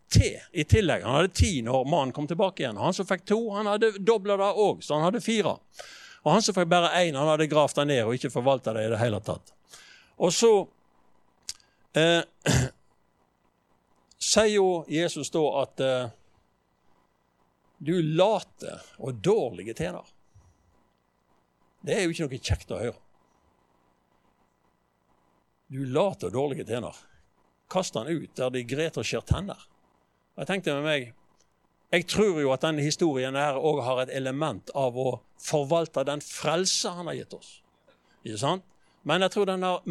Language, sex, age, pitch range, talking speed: English, male, 60-79, 130-185 Hz, 160 wpm